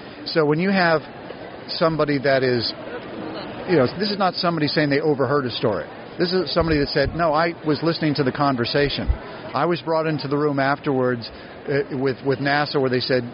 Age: 40-59